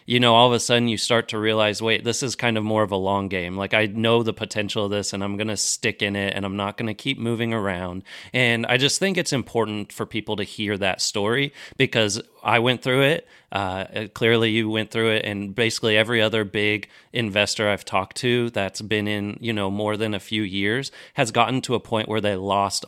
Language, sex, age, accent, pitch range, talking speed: English, male, 30-49, American, 100-115 Hz, 240 wpm